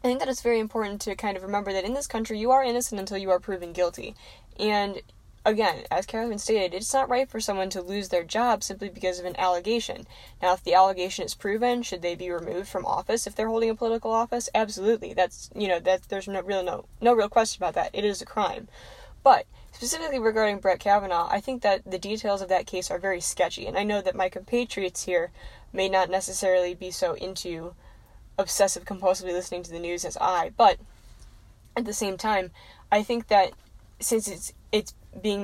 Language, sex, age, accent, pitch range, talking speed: English, female, 10-29, American, 185-220 Hz, 215 wpm